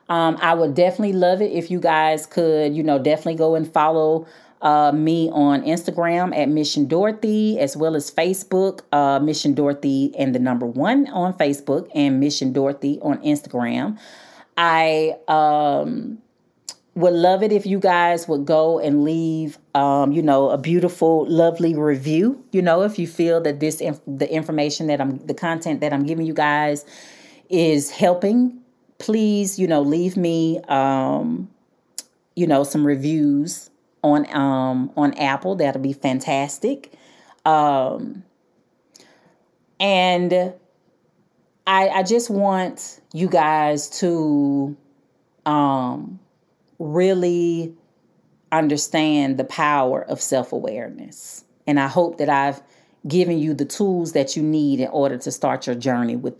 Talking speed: 140 wpm